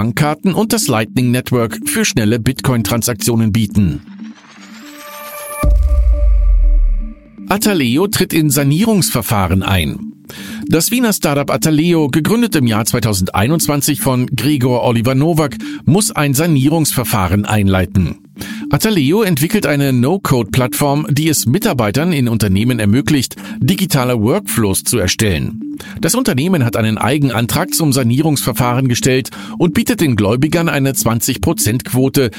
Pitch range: 115-165 Hz